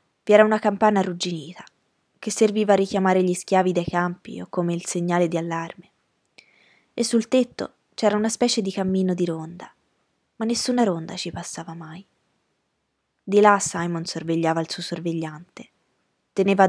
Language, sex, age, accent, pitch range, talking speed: Italian, female, 20-39, native, 165-205 Hz, 155 wpm